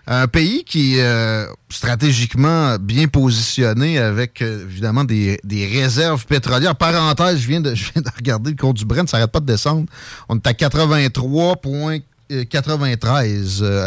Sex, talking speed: male, 155 wpm